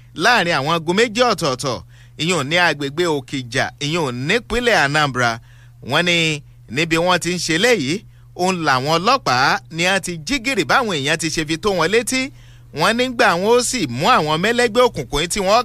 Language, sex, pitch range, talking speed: English, male, 140-215 Hz, 160 wpm